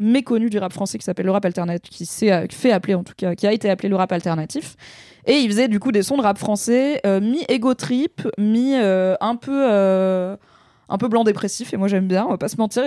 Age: 20-39